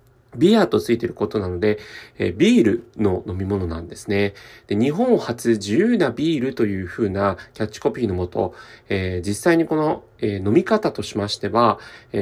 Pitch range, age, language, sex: 105-155 Hz, 40-59, Japanese, male